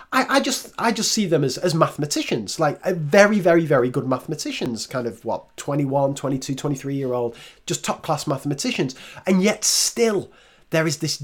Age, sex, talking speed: 30-49, male, 175 wpm